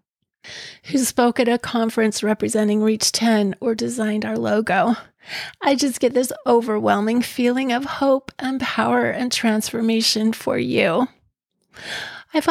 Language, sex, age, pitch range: English, female, 30-49, 215-240 Hz